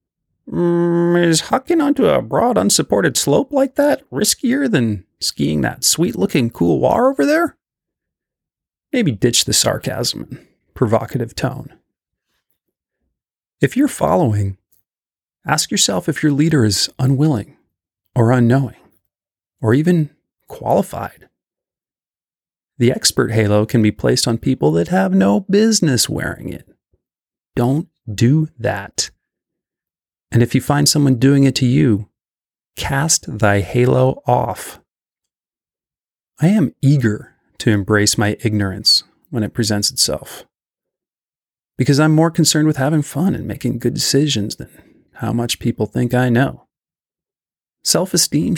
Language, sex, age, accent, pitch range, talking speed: English, male, 30-49, American, 110-160 Hz, 125 wpm